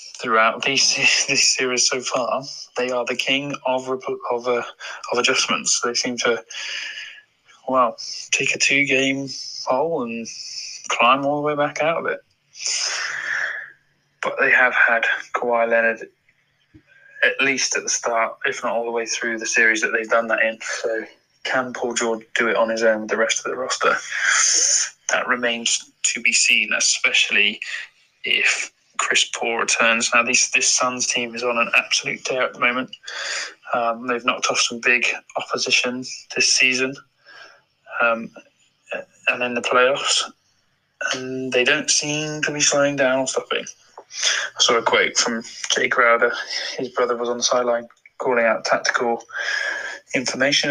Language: English